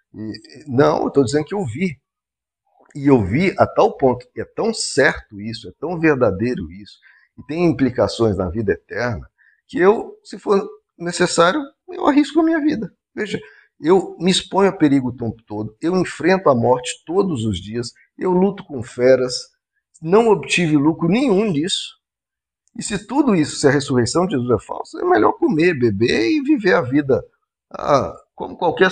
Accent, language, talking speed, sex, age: Brazilian, Portuguese, 175 wpm, male, 50-69